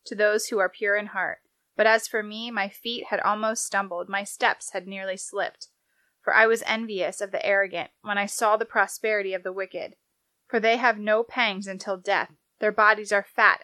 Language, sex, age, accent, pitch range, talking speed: English, female, 20-39, American, 195-230 Hz, 205 wpm